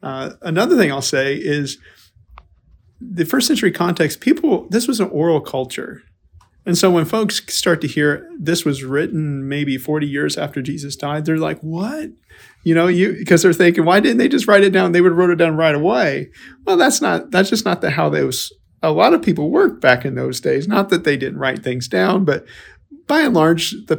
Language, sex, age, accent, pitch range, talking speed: English, male, 40-59, American, 130-175 Hz, 215 wpm